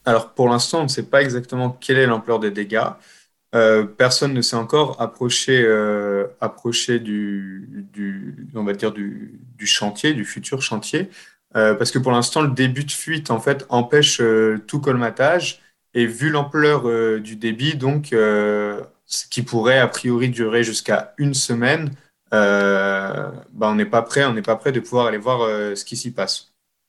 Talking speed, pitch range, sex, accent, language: 185 wpm, 105-125 Hz, male, French, French